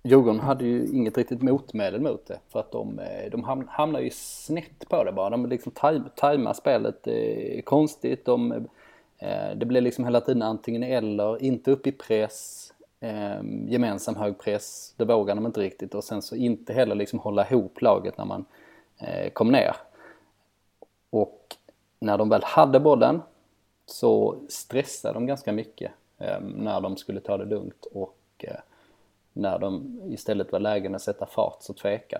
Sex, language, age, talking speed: male, Swedish, 20-39, 170 wpm